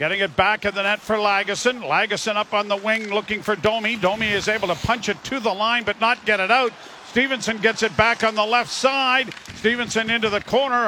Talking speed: 230 wpm